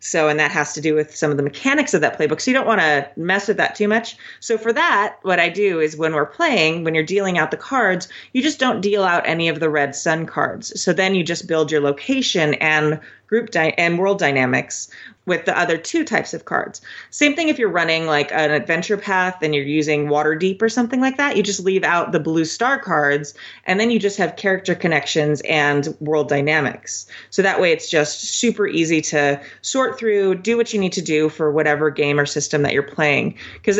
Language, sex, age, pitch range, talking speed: English, female, 30-49, 155-215 Hz, 235 wpm